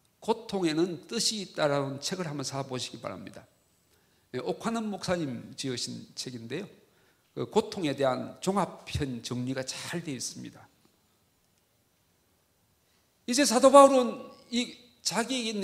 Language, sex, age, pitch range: Korean, male, 40-59, 145-230 Hz